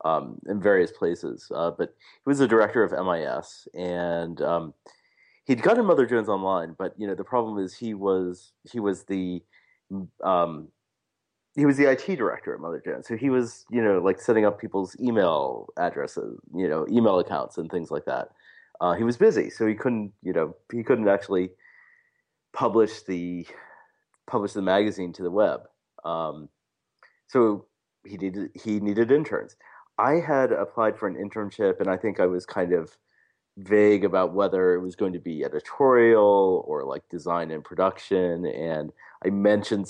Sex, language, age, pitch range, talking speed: male, English, 30-49, 90-110 Hz, 175 wpm